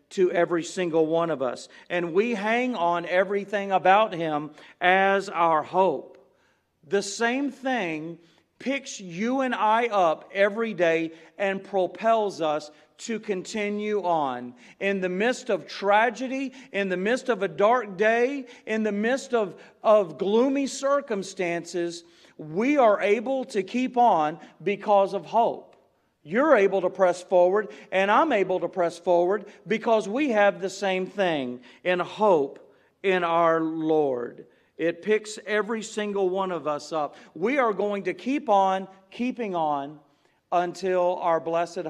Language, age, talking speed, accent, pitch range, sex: English, 40-59, 145 wpm, American, 165-215 Hz, male